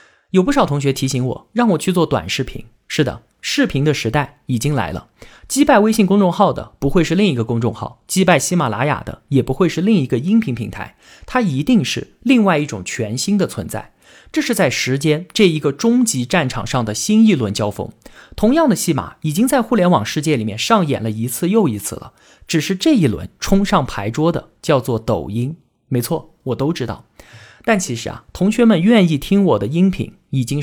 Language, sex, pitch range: Chinese, male, 120-190 Hz